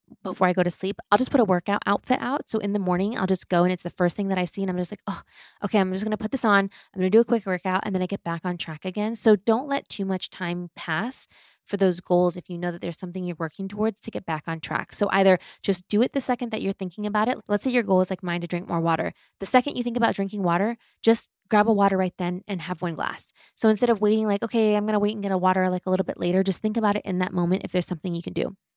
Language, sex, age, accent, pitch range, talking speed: English, female, 20-39, American, 180-215 Hz, 310 wpm